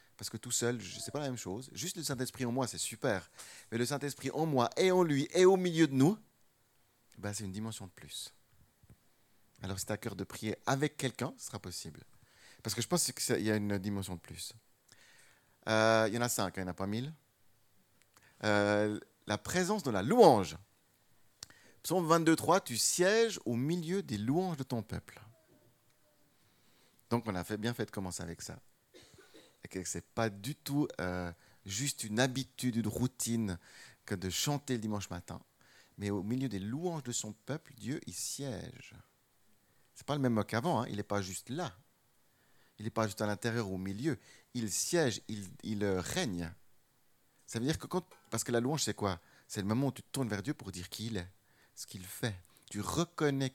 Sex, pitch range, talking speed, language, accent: male, 100-135 Hz, 205 wpm, French, French